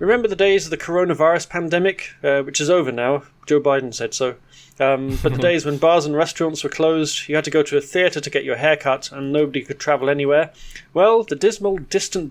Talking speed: 230 wpm